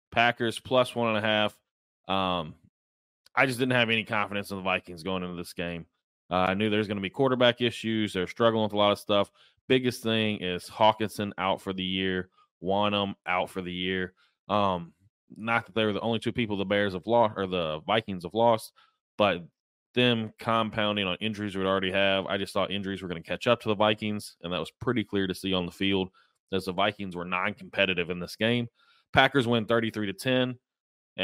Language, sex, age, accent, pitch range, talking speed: English, male, 20-39, American, 95-120 Hz, 210 wpm